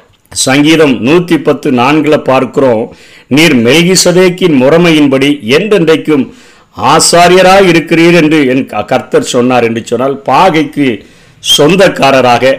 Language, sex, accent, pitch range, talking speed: Tamil, male, native, 120-160 Hz, 90 wpm